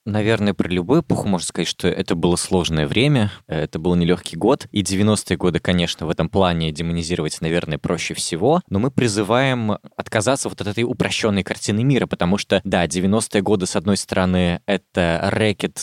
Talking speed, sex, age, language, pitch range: 175 wpm, male, 20-39, Russian, 90-115 Hz